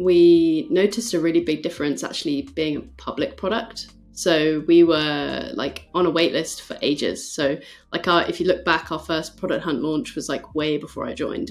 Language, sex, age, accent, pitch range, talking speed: English, female, 20-39, British, 150-190 Hz, 205 wpm